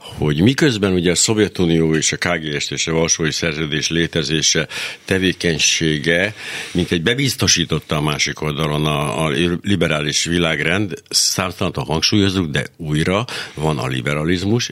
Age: 60-79